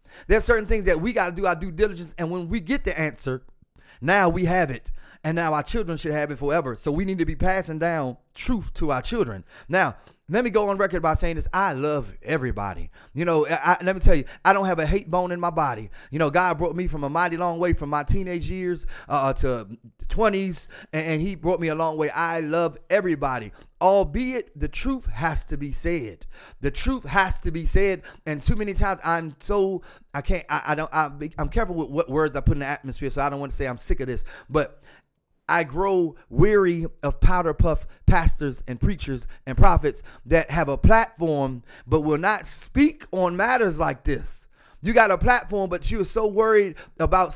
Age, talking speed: 30-49, 220 wpm